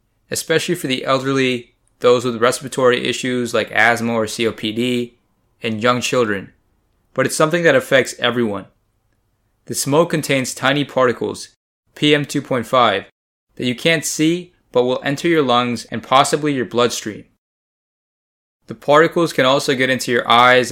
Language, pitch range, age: English, 115-135 Hz, 20-39